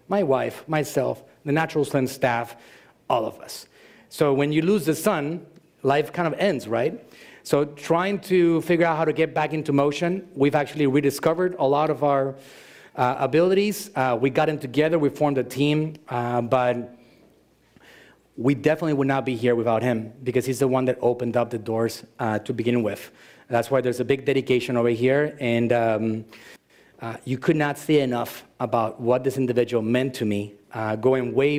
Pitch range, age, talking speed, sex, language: 120-145 Hz, 30-49, 190 wpm, male, English